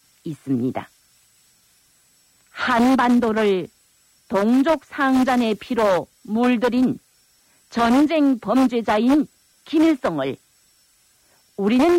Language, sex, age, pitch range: Korean, female, 40-59, 205-270 Hz